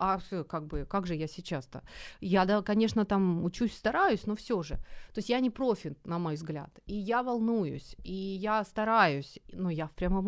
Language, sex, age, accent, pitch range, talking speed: Ukrainian, female, 30-49, native, 160-210 Hz, 200 wpm